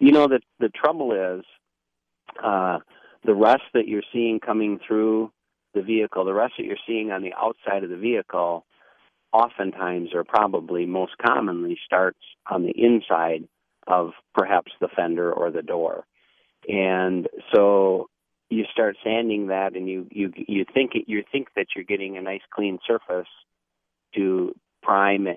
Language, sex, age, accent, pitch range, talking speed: English, male, 50-69, American, 90-110 Hz, 155 wpm